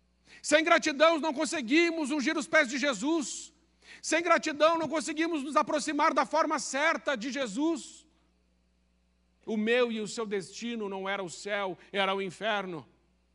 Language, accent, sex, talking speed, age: Portuguese, Brazilian, male, 150 wpm, 50-69